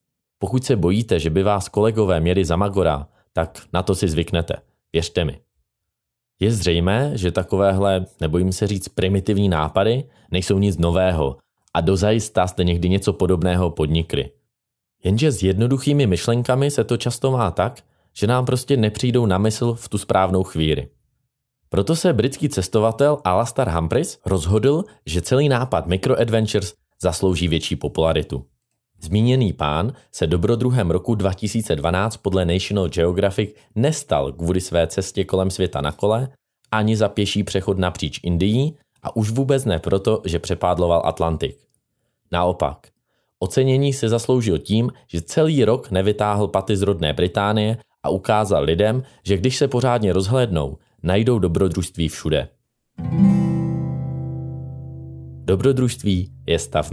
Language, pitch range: Czech, 85-115 Hz